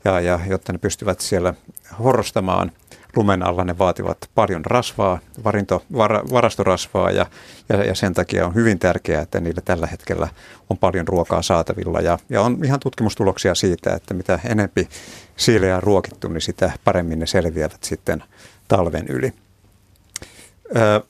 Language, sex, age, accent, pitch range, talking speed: Finnish, male, 50-69, native, 90-105 Hz, 150 wpm